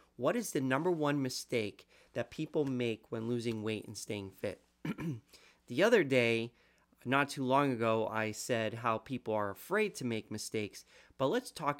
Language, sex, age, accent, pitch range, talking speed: English, male, 30-49, American, 110-140 Hz, 175 wpm